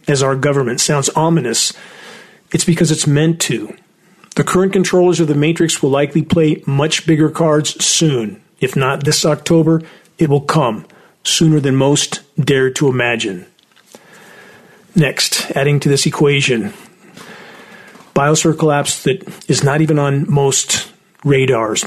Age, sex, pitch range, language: 40-59, male, 140-170 Hz, English